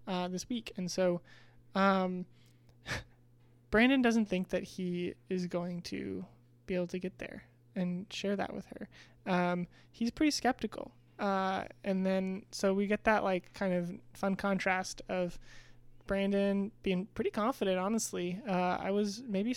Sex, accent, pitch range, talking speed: male, American, 180-220 Hz, 155 wpm